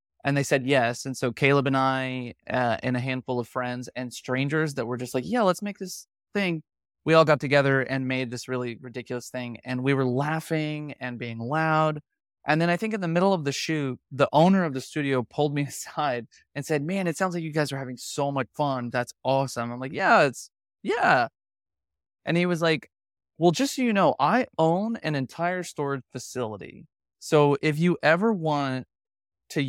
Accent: American